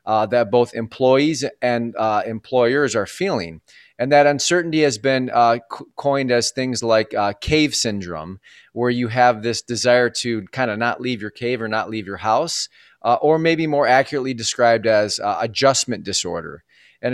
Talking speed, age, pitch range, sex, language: 180 wpm, 30-49, 110-130 Hz, male, English